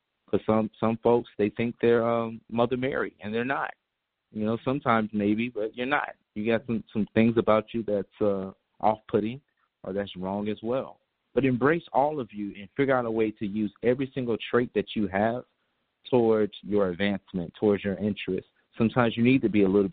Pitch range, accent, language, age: 100-125 Hz, American, English, 30-49